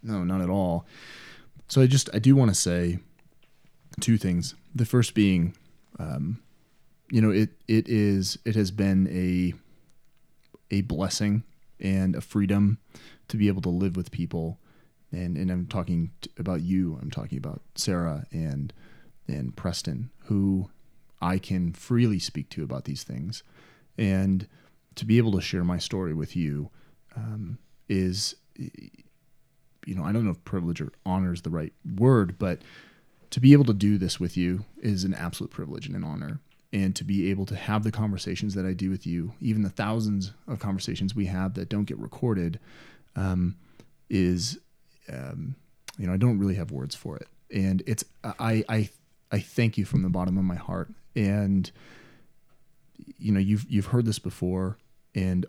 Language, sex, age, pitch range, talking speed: English, male, 30-49, 90-110 Hz, 175 wpm